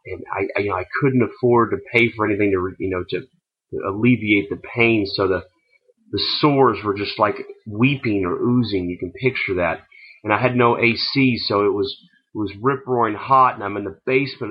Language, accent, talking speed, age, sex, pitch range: English, American, 205 wpm, 30-49, male, 100-130 Hz